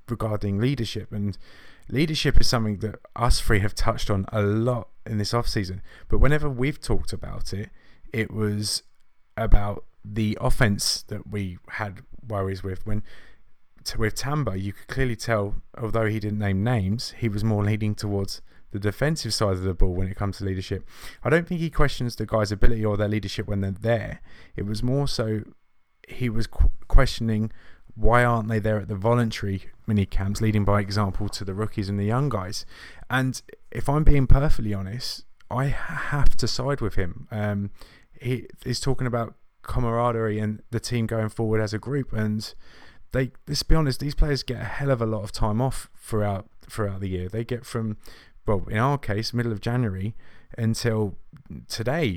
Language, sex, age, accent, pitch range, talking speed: English, male, 20-39, British, 105-120 Hz, 185 wpm